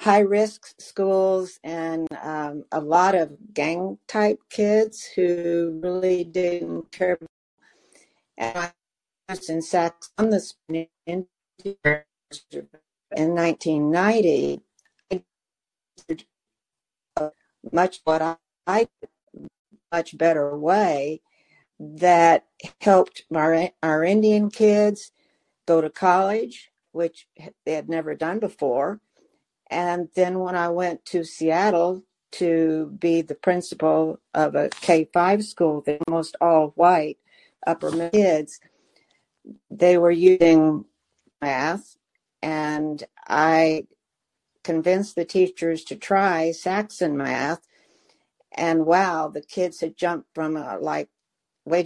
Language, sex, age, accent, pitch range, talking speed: English, female, 60-79, American, 160-185 Hz, 100 wpm